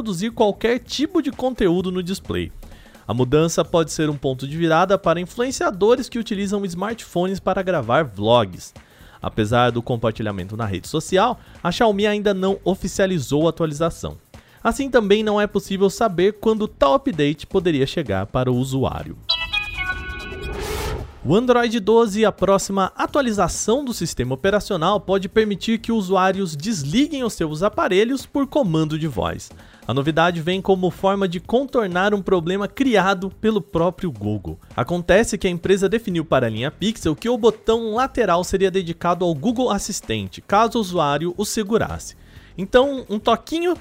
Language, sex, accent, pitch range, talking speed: Portuguese, male, Brazilian, 155-220 Hz, 150 wpm